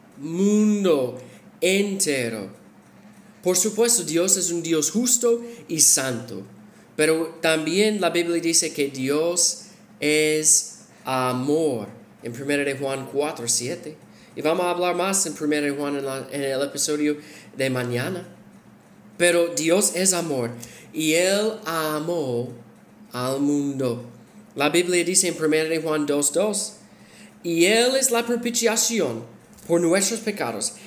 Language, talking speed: Spanish, 125 wpm